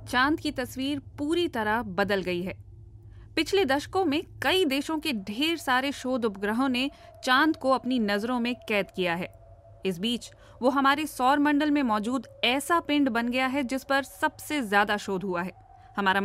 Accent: native